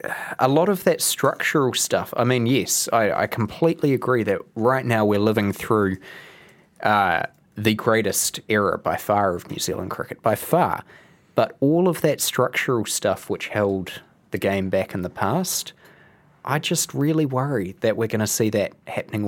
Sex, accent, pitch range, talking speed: male, Australian, 100-120 Hz, 175 wpm